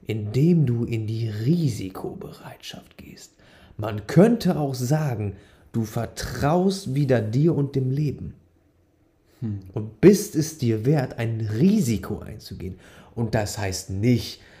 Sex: male